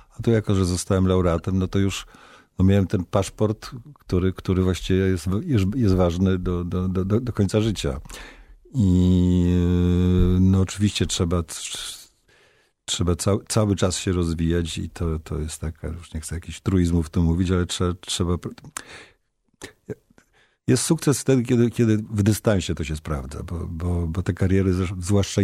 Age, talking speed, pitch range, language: 50-69, 155 wpm, 85-105 Hz, Polish